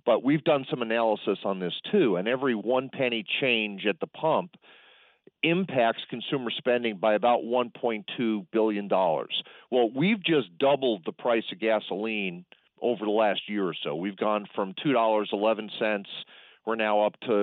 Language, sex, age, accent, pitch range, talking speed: English, male, 40-59, American, 110-135 Hz, 175 wpm